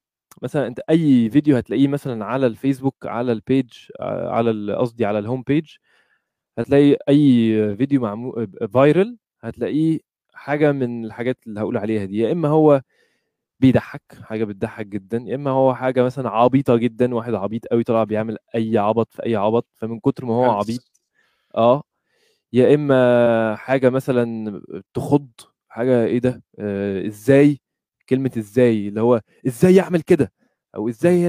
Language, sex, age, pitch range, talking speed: Arabic, male, 20-39, 115-145 Hz, 150 wpm